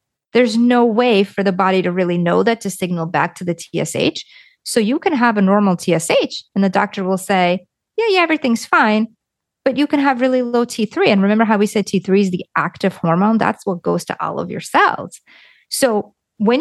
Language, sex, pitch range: English, female, 175-225 Hz